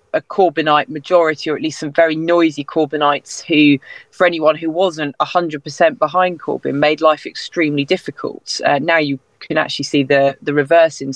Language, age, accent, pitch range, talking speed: English, 20-39, British, 150-180 Hz, 175 wpm